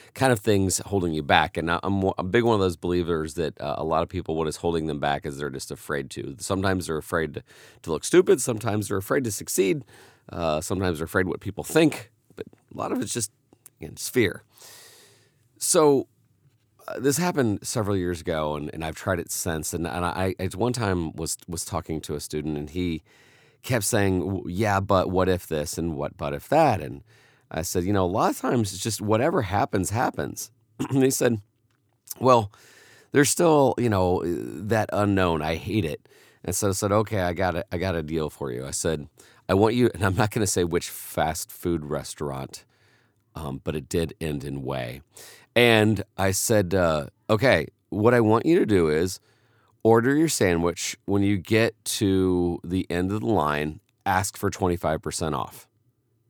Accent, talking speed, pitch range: American, 200 wpm, 85-110 Hz